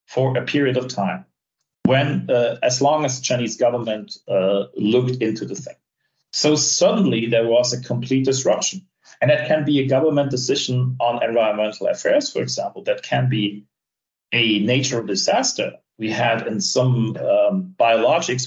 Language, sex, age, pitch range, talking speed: English, male, 40-59, 115-140 Hz, 160 wpm